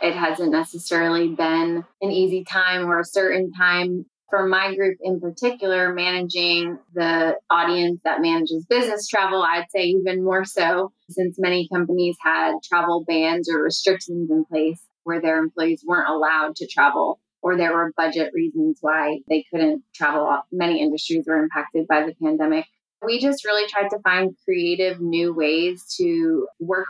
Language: English